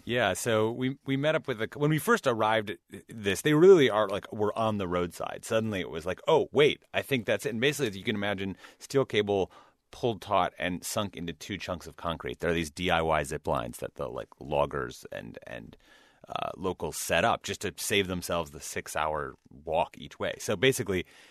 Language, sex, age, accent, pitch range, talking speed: English, male, 30-49, American, 90-110 Hz, 215 wpm